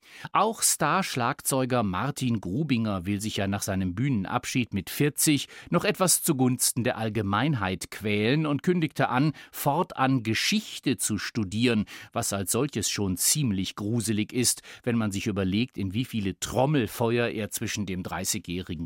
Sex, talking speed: male, 140 wpm